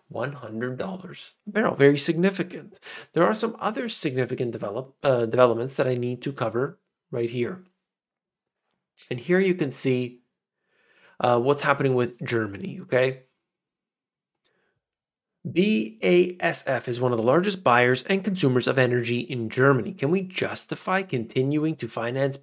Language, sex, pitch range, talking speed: English, male, 125-180 Hz, 135 wpm